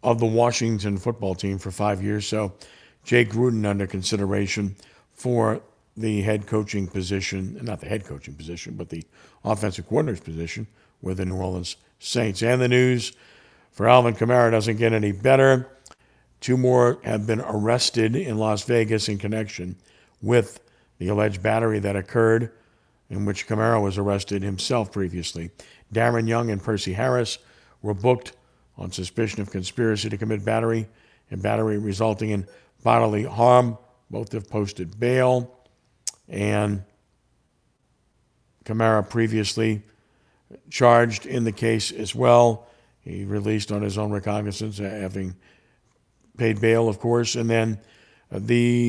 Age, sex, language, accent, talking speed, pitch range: 50-69, male, English, American, 140 wpm, 100-115 Hz